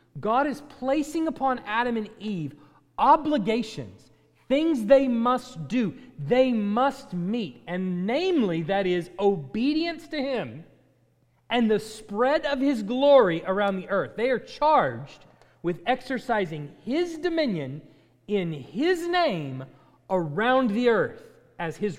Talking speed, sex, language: 125 wpm, male, English